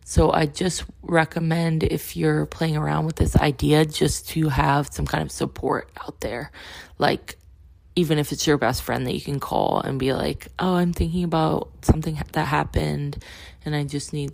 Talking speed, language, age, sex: 190 wpm, English, 20-39, female